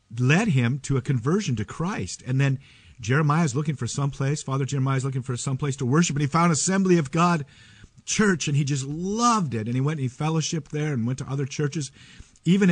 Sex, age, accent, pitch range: male, 50-69, American, 115-155 Hz